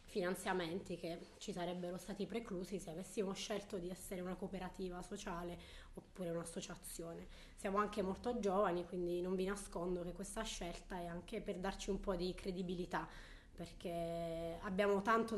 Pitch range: 175-205 Hz